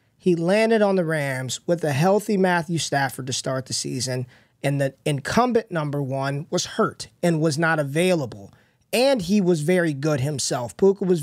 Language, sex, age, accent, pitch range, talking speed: English, male, 20-39, American, 145-195 Hz, 175 wpm